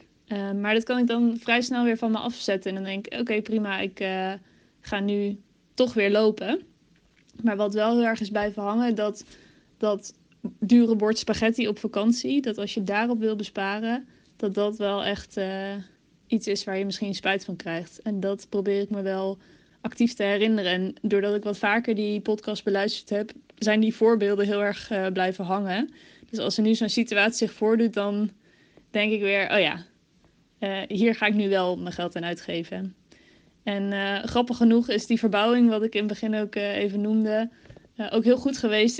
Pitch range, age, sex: 200-225 Hz, 20-39, female